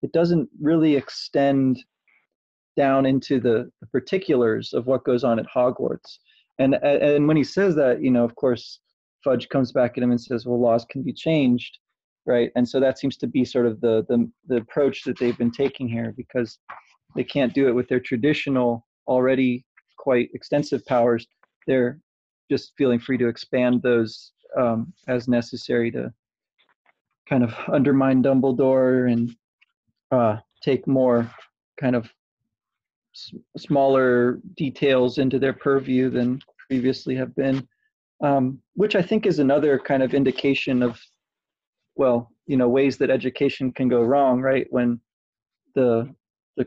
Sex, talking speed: male, 155 wpm